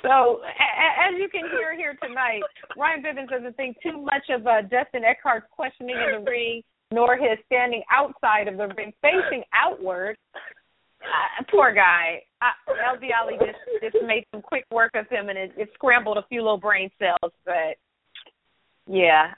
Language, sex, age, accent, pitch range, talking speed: English, female, 30-49, American, 190-245 Hz, 165 wpm